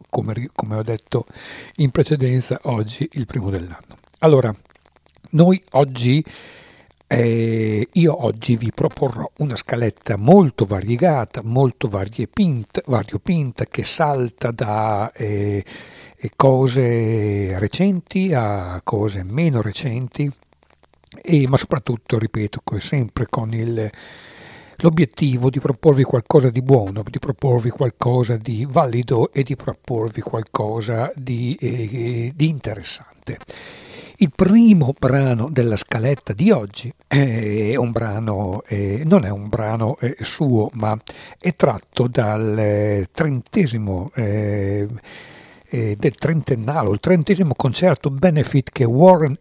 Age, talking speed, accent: 60-79, 110 wpm, Italian